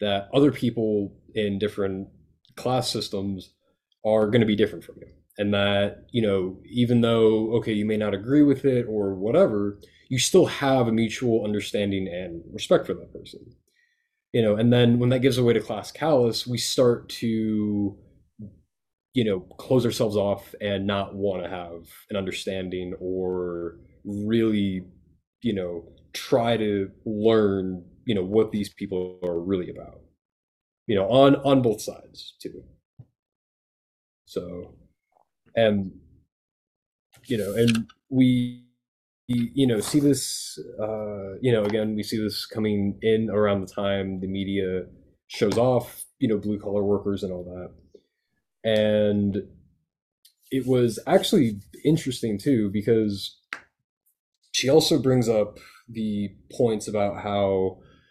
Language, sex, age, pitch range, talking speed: English, male, 20-39, 95-115 Hz, 140 wpm